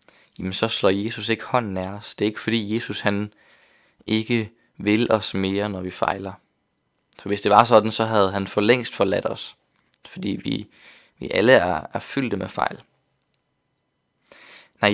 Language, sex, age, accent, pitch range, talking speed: Danish, male, 20-39, native, 100-115 Hz, 175 wpm